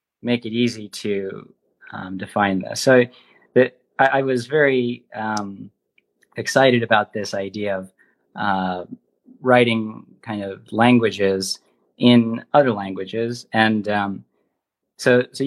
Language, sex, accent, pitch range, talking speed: English, male, American, 105-125 Hz, 115 wpm